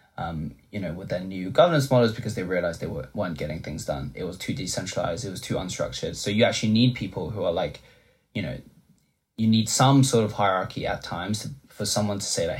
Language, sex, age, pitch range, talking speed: English, male, 20-39, 100-125 Hz, 235 wpm